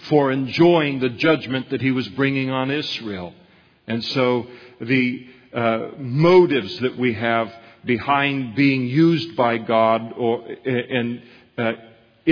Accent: American